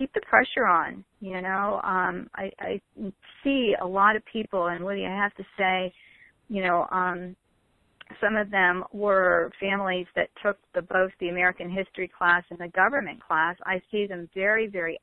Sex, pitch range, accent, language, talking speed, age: female, 175-195 Hz, American, English, 180 wpm, 40-59